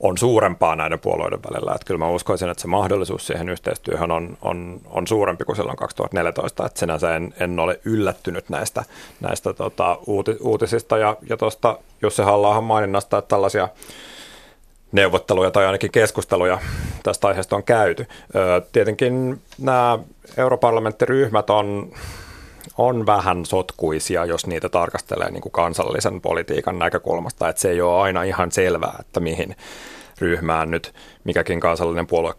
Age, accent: 30-49, native